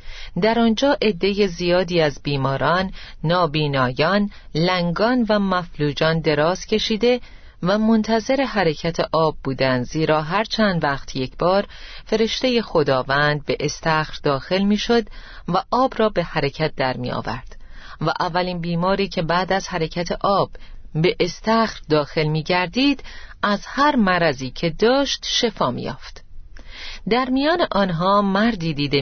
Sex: female